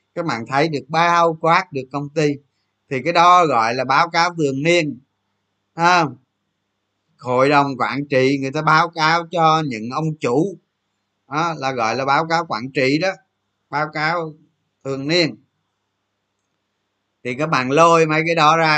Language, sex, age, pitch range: Vietnamese, male, 20-39, 100-155 Hz